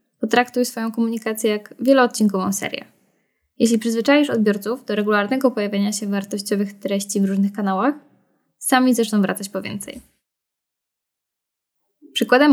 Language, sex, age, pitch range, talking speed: Polish, female, 10-29, 200-235 Hz, 115 wpm